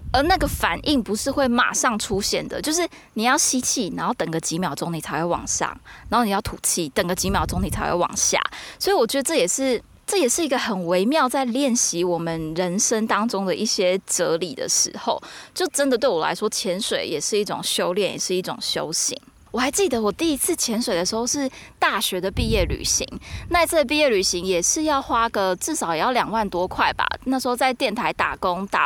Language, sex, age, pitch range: Chinese, female, 20-39, 185-260 Hz